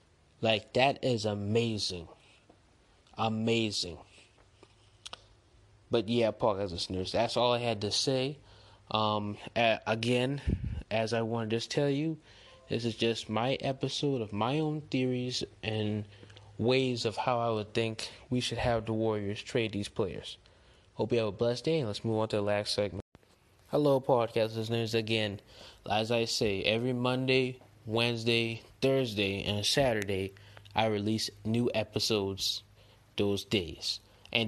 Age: 20-39